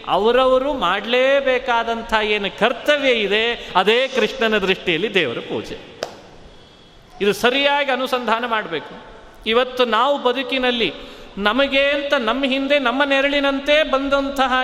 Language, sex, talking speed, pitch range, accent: Kannada, male, 100 wpm, 220-270 Hz, native